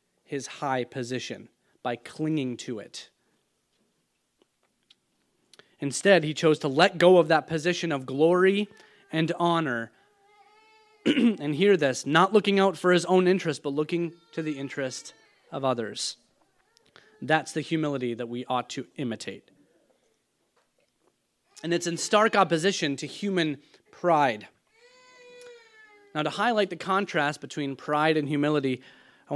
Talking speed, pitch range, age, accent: 130 wpm, 145-190 Hz, 30-49, American